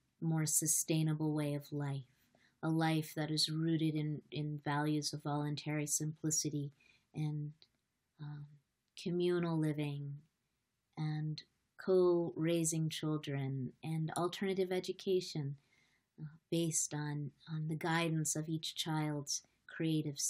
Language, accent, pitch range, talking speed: English, American, 145-165 Hz, 105 wpm